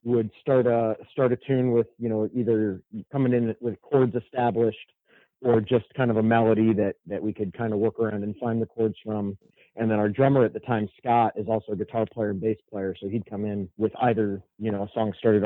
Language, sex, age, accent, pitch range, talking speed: English, male, 30-49, American, 105-125 Hz, 235 wpm